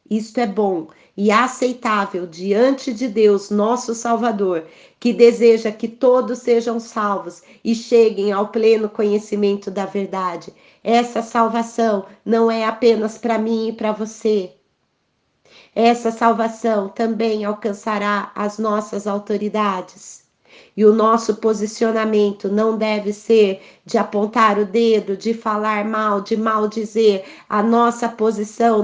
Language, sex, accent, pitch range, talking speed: Portuguese, female, Brazilian, 205-230 Hz, 125 wpm